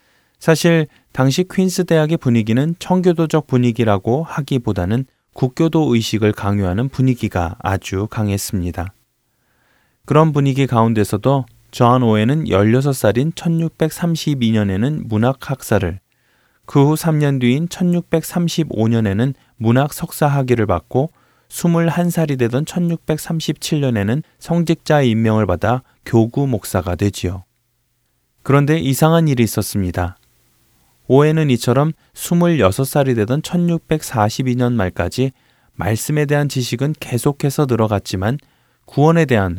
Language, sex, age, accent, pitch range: Korean, male, 20-39, native, 105-150 Hz